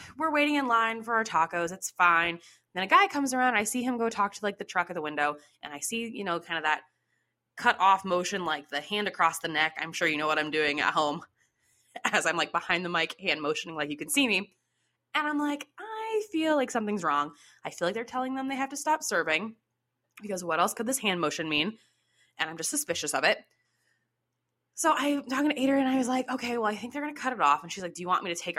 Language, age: English, 20-39